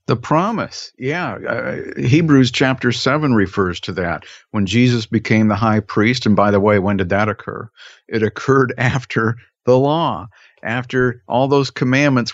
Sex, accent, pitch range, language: male, American, 100-125 Hz, English